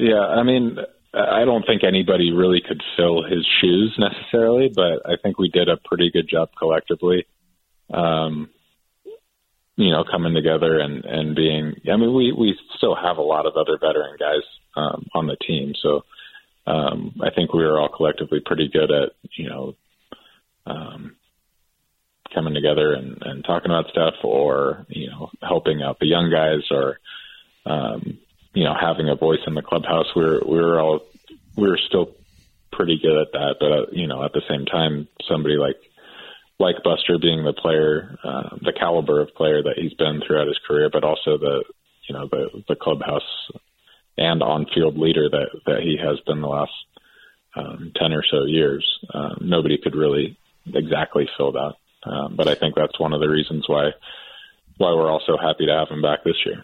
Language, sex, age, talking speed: English, male, 30-49, 185 wpm